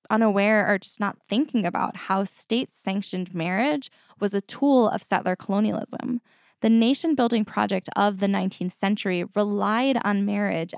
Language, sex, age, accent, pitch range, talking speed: English, female, 10-29, American, 190-240 Hz, 140 wpm